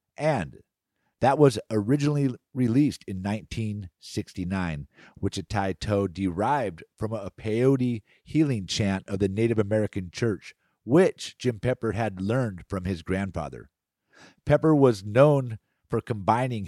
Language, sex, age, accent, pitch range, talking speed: English, male, 50-69, American, 100-130 Hz, 125 wpm